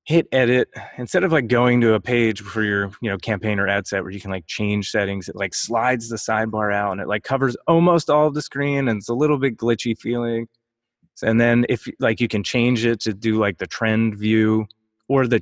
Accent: American